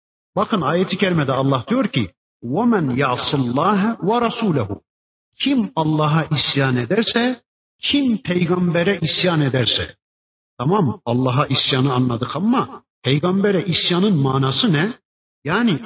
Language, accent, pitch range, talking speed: Turkish, native, 130-180 Hz, 95 wpm